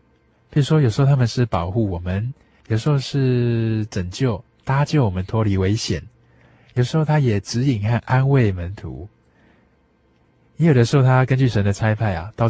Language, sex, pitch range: Chinese, male, 100-120 Hz